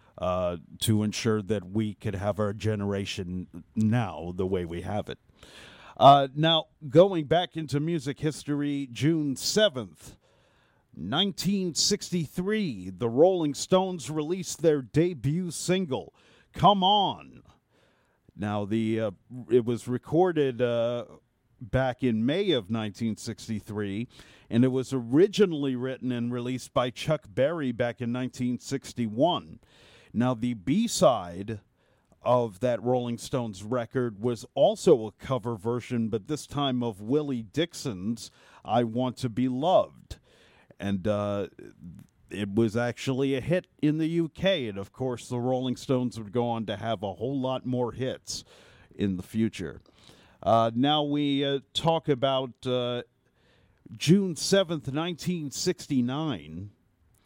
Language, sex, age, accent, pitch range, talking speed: English, male, 50-69, American, 110-145 Hz, 130 wpm